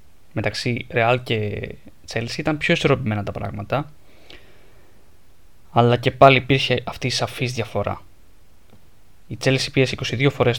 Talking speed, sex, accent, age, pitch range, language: 125 wpm, male, Spanish, 10-29, 100-130 Hz, Greek